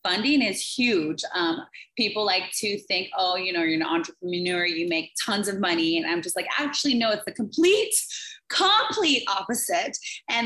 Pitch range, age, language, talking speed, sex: 175-240 Hz, 20-39, English, 180 wpm, female